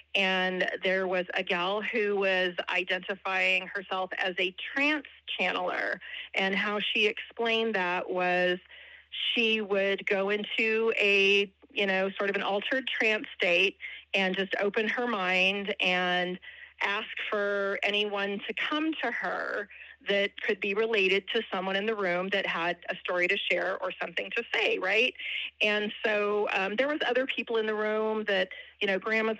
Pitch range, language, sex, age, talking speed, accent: 195-230 Hz, English, female, 30-49, 160 wpm, American